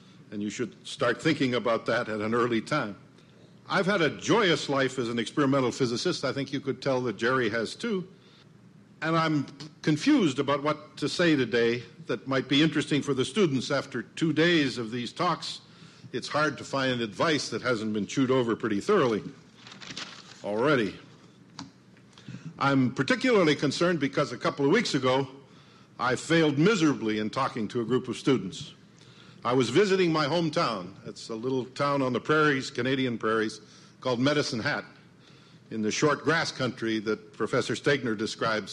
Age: 60-79